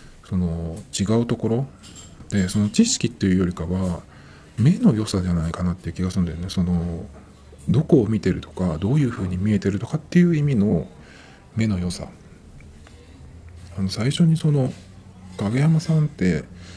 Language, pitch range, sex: Japanese, 90-130 Hz, male